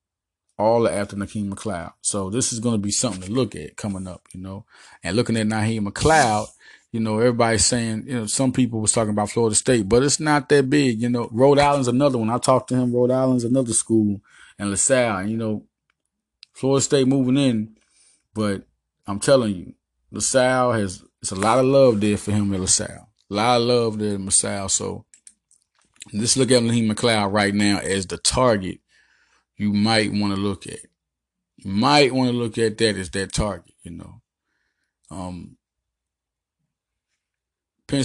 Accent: American